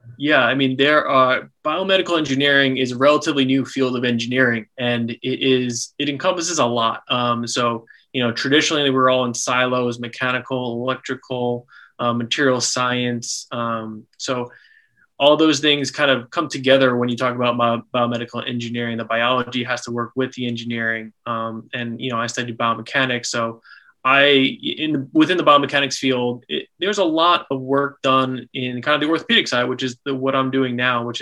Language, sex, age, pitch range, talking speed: English, male, 20-39, 120-135 Hz, 180 wpm